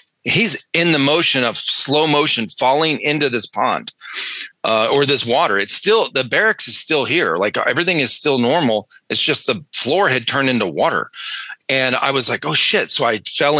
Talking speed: 195 wpm